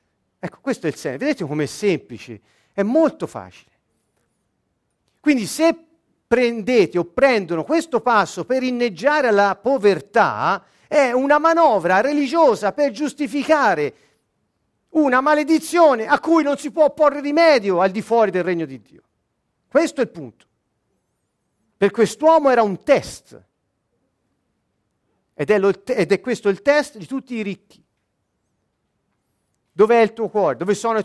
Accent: native